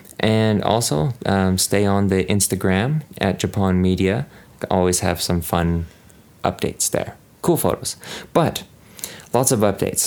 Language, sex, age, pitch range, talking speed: English, male, 30-49, 90-105 Hz, 130 wpm